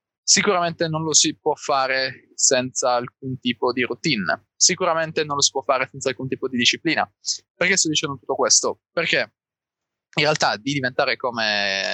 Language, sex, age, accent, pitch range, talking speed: Italian, male, 20-39, native, 115-140 Hz, 165 wpm